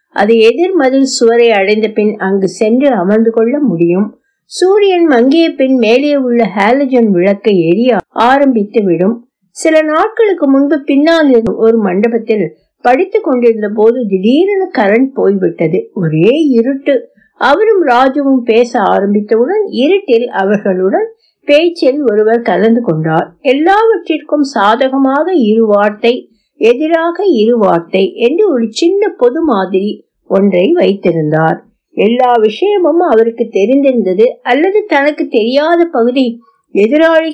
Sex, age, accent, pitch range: female, 60-79, native, 210-295 Hz